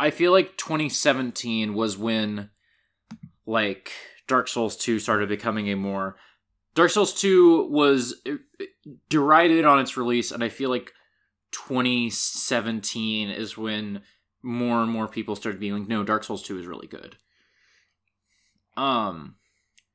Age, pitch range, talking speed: 20-39, 110-175 Hz, 130 wpm